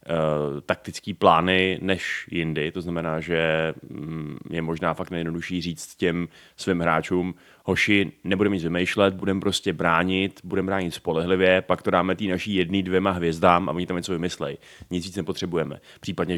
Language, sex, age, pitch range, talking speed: Czech, male, 30-49, 85-95 Hz, 150 wpm